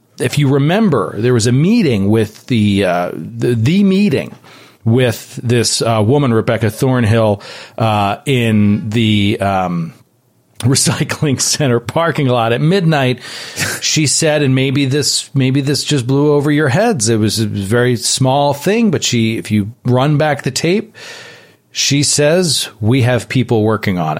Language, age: English, 40-59